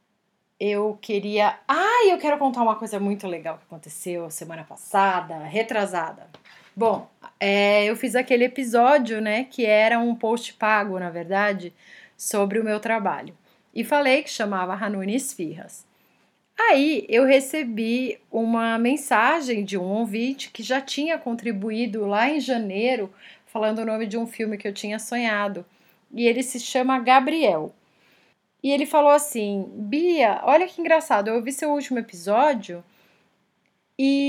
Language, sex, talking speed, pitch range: Portuguese, female, 145 wpm, 200-265 Hz